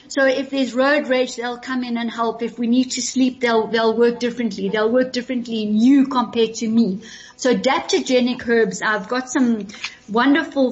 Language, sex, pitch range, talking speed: English, female, 230-275 Hz, 190 wpm